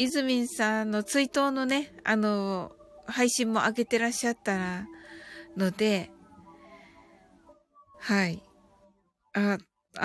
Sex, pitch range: female, 210-275 Hz